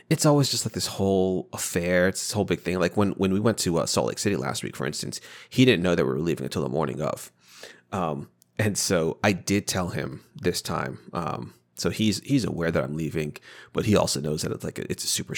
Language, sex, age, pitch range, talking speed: English, male, 30-49, 80-105 Hz, 255 wpm